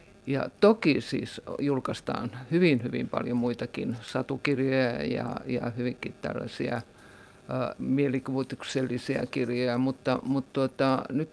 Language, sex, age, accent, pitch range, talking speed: Finnish, male, 50-69, native, 125-140 Hz, 105 wpm